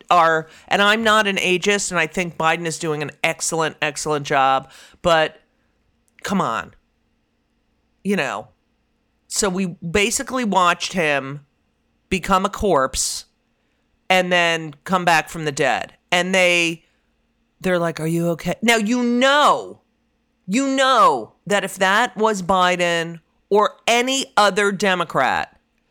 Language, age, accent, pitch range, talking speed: English, 40-59, American, 165-220 Hz, 135 wpm